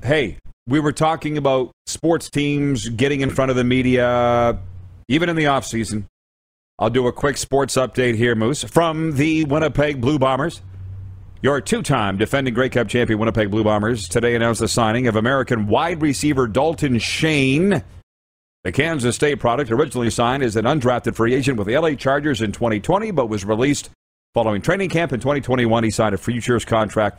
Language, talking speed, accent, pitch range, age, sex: English, 175 wpm, American, 110-145 Hz, 40-59, male